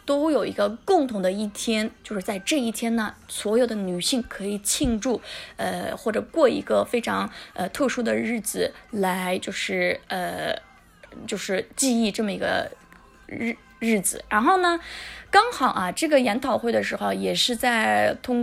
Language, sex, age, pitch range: Chinese, female, 20-39, 205-275 Hz